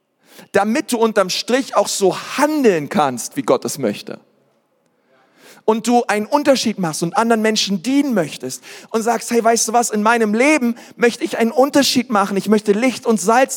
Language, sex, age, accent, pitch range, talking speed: German, male, 40-59, German, 205-245 Hz, 180 wpm